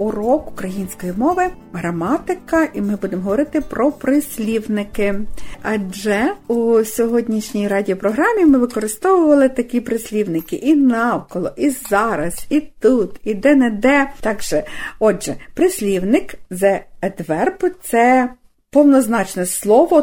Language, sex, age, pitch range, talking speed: Ukrainian, female, 50-69, 205-290 Hz, 105 wpm